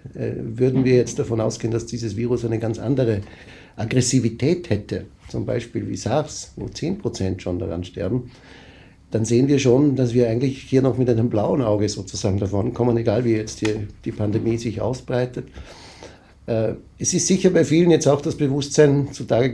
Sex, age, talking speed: male, 60-79, 175 wpm